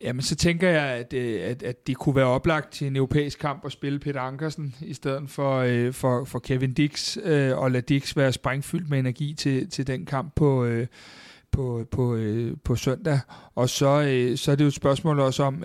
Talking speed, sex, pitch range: 220 wpm, male, 135-155 Hz